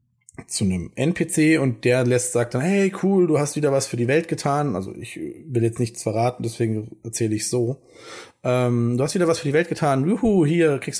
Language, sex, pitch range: German, male, 110-140 Hz